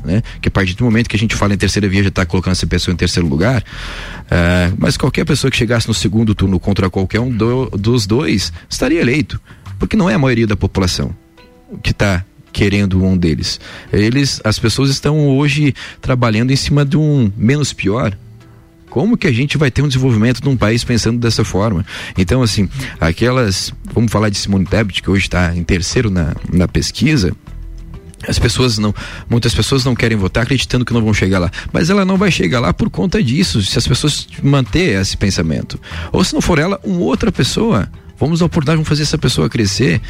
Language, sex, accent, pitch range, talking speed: Portuguese, male, Brazilian, 95-130 Hz, 205 wpm